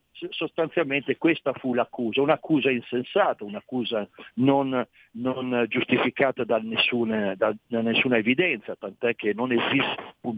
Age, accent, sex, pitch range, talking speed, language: 50-69, native, male, 120-150 Hz, 125 wpm, Italian